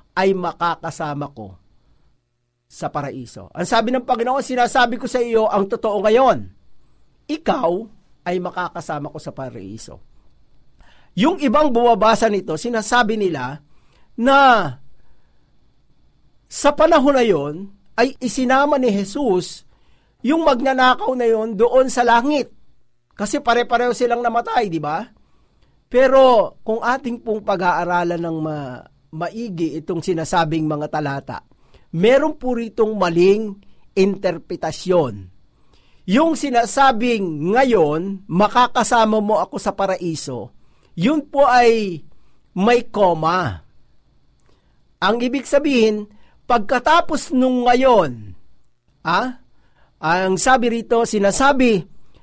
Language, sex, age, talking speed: Filipino, male, 50-69, 105 wpm